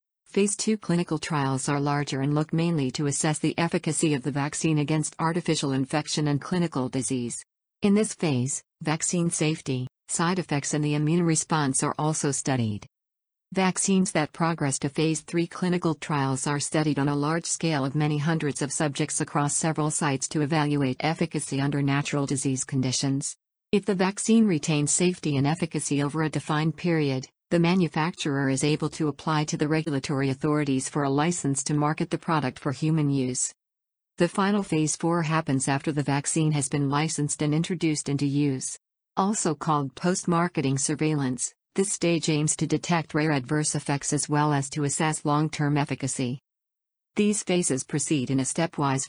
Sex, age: female, 50-69